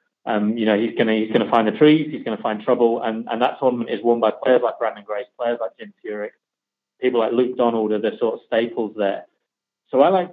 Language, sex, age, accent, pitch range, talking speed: English, male, 30-49, British, 115-140 Hz, 245 wpm